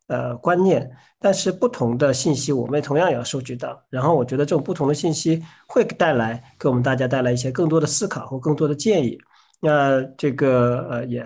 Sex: male